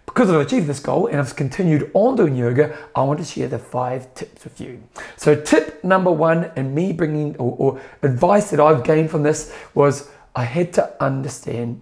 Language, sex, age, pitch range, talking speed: English, male, 40-59, 125-170 Hz, 205 wpm